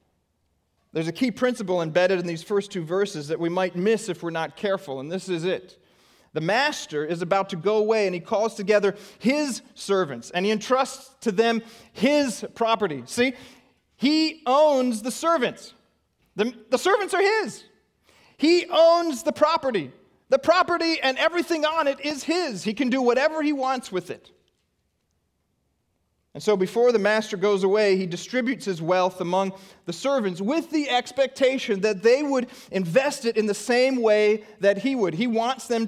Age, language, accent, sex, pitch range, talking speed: 40-59, English, American, male, 185-255 Hz, 175 wpm